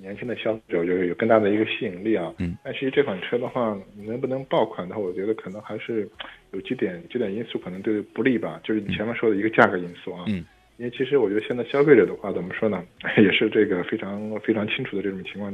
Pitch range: 95-115 Hz